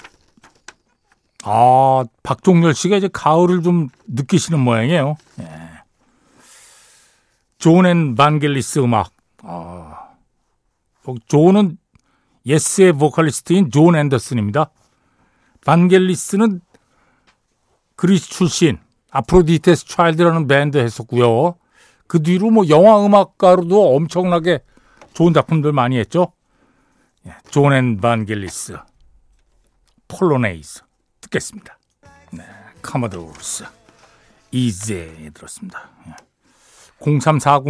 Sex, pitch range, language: male, 120-175 Hz, Korean